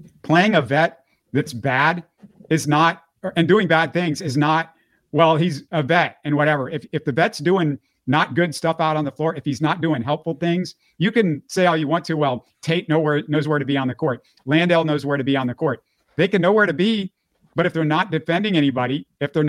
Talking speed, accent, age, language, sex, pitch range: 235 wpm, American, 50-69, English, male, 145-175 Hz